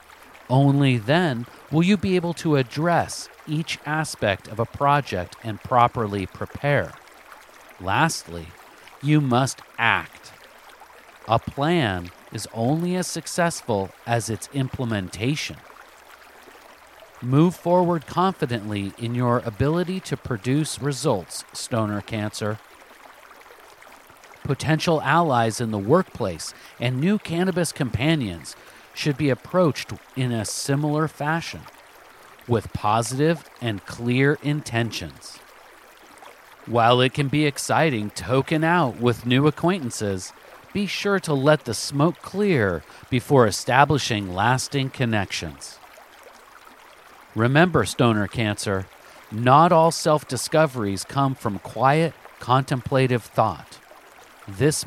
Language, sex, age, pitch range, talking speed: English, male, 40-59, 115-155 Hz, 105 wpm